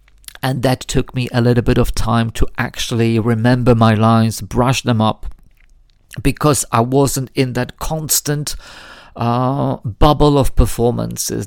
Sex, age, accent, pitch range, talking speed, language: male, 50-69, British, 115-145 Hz, 140 wpm, English